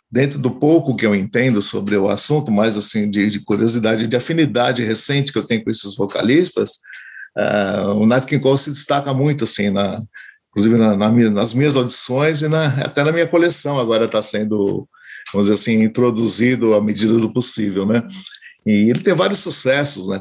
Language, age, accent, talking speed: Portuguese, 50-69, Brazilian, 185 wpm